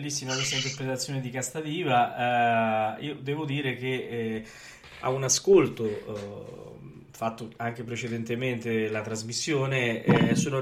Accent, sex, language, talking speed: native, male, Italian, 120 wpm